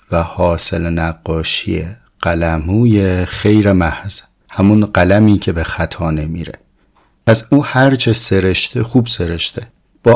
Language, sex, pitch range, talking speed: Persian, male, 90-115 Hz, 110 wpm